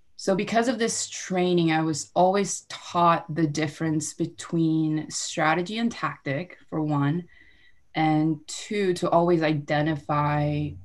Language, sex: English, female